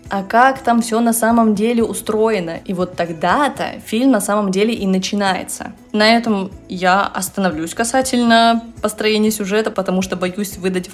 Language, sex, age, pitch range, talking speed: Russian, female, 20-39, 185-240 Hz, 155 wpm